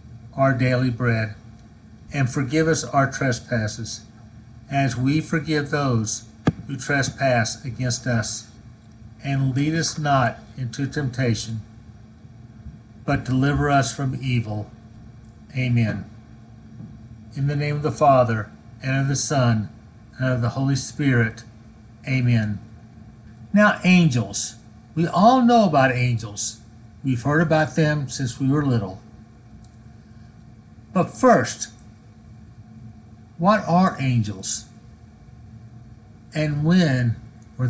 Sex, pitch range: male, 115-145 Hz